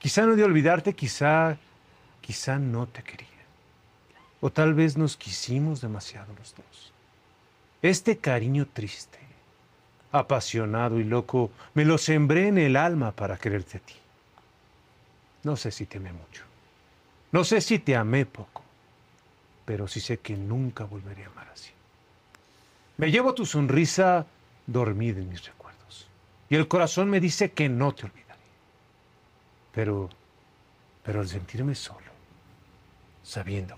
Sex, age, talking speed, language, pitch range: male, 40-59, 135 wpm, Spanish, 100-145 Hz